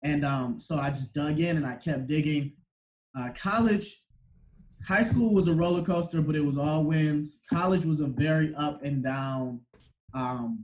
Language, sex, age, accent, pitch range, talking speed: English, male, 20-39, American, 130-160 Hz, 180 wpm